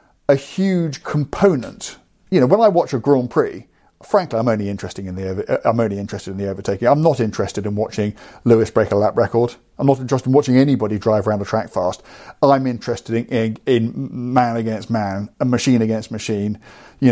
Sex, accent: male, British